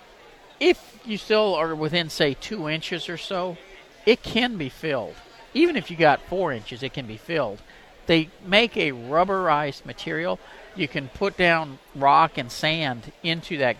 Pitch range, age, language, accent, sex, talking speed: 140-185 Hz, 50-69, English, American, male, 165 wpm